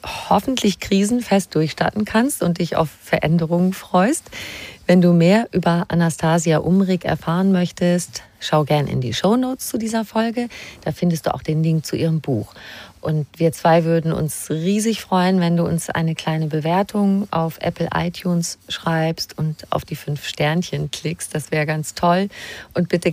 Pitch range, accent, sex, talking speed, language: 145-180 Hz, German, female, 165 wpm, German